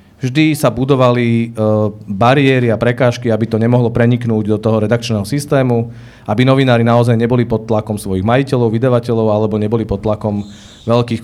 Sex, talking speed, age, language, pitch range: male, 150 wpm, 40-59, Slovak, 110-130 Hz